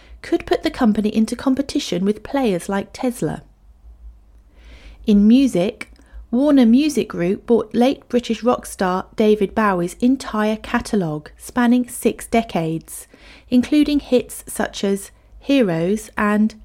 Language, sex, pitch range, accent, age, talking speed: English, female, 195-255 Hz, British, 40-59, 120 wpm